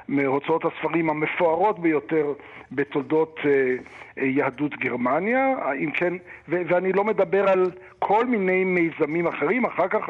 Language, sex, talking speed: Hebrew, male, 115 wpm